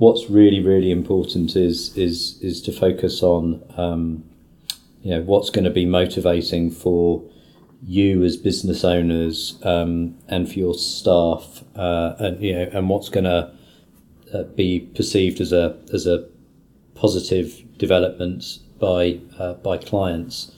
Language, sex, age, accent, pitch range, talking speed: English, male, 40-59, British, 85-95 Hz, 145 wpm